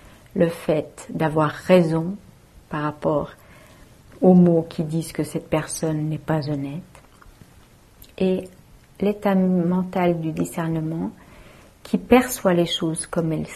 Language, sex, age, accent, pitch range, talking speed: English, female, 60-79, French, 160-195 Hz, 120 wpm